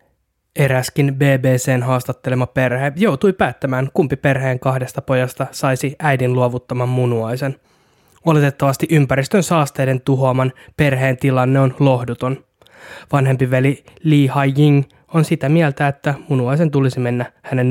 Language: Finnish